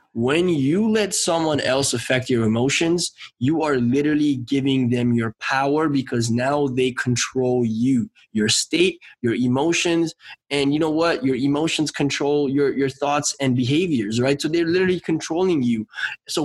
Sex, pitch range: male, 135-165 Hz